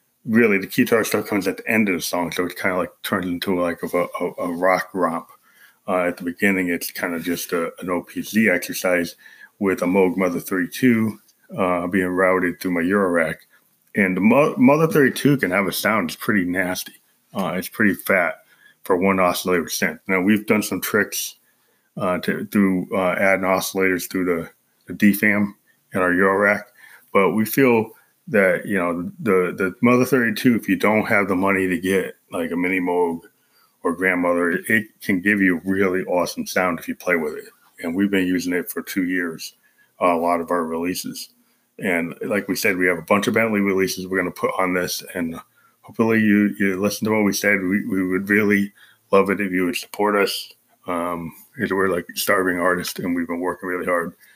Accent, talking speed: American, 205 wpm